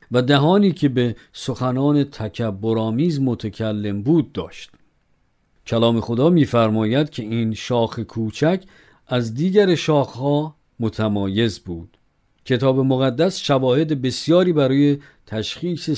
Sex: male